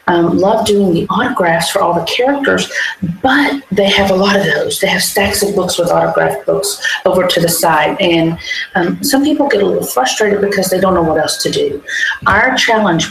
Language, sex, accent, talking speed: English, female, American, 210 wpm